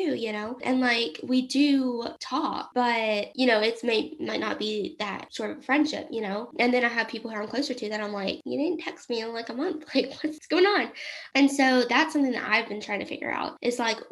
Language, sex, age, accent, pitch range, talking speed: English, female, 10-29, American, 215-265 Hz, 250 wpm